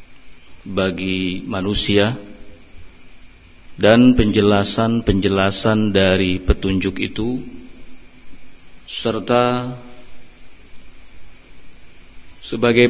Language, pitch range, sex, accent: Indonesian, 85-120 Hz, male, native